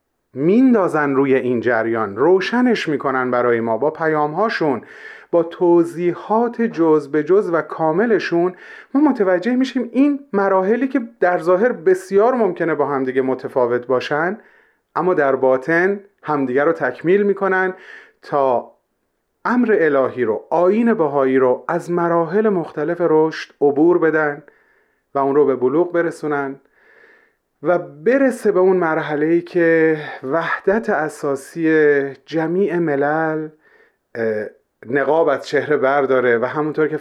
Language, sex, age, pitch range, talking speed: Persian, male, 30-49, 140-185 Hz, 120 wpm